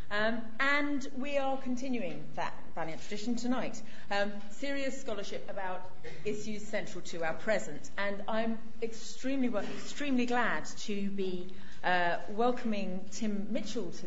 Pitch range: 190-240 Hz